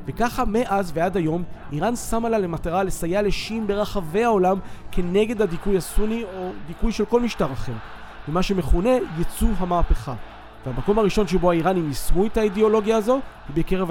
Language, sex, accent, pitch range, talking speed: Hebrew, male, native, 155-205 Hz, 150 wpm